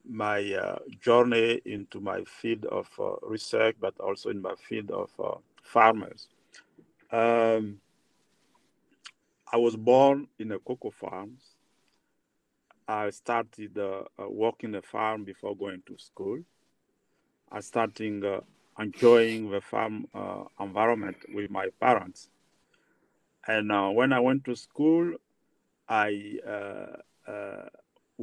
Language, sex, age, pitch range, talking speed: English, male, 50-69, 105-130 Hz, 125 wpm